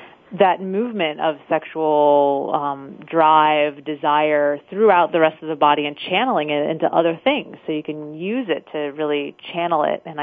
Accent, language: American, English